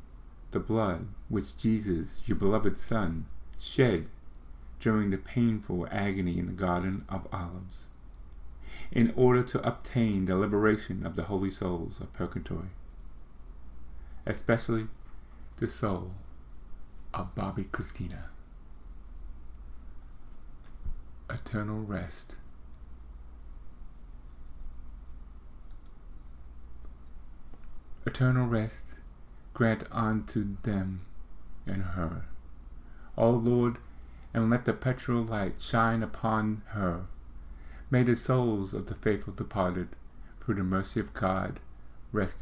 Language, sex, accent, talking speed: English, male, American, 95 wpm